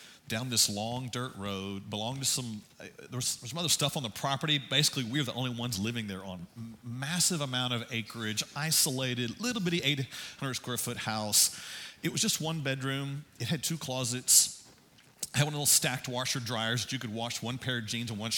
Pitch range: 110-135 Hz